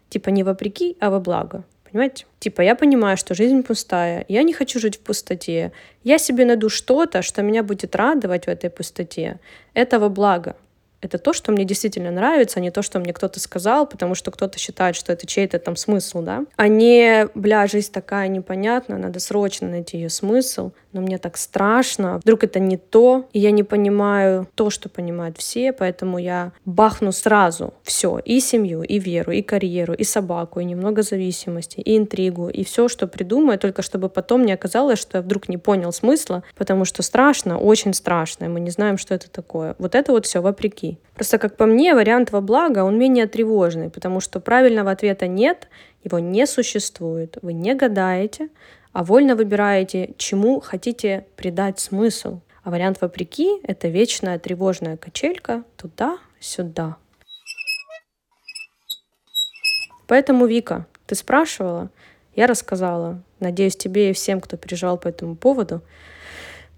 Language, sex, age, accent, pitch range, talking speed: Russian, female, 20-39, native, 180-230 Hz, 165 wpm